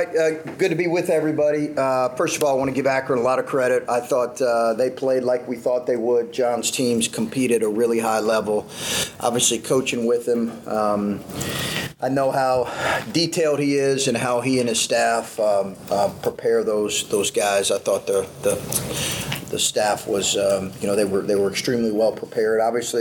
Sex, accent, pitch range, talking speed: male, American, 105-135 Hz, 205 wpm